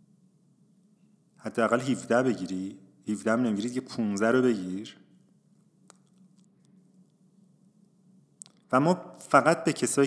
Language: Persian